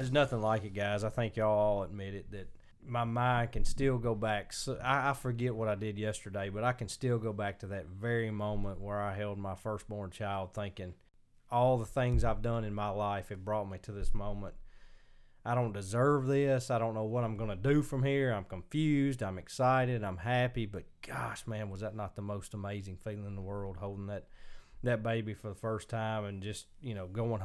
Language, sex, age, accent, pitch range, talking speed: English, male, 20-39, American, 100-115 Hz, 225 wpm